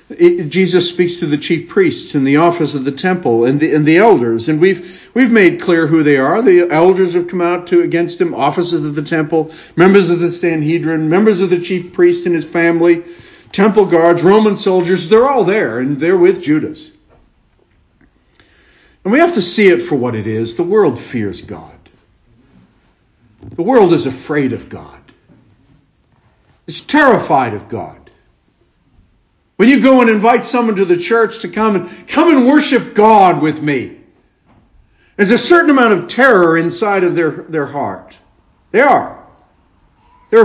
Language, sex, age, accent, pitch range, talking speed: English, male, 60-79, American, 160-235 Hz, 175 wpm